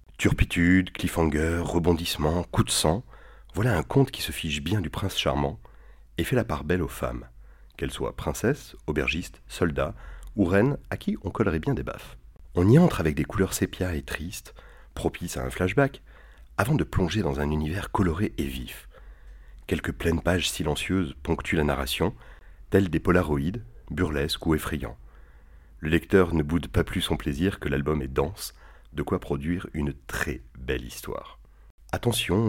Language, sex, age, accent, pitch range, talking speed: French, male, 40-59, French, 70-90 Hz, 170 wpm